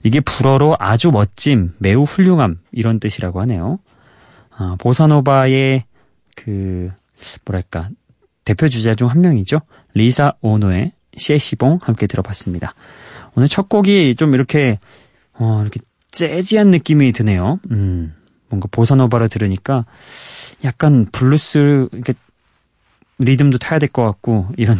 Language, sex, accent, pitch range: Korean, male, native, 100-145 Hz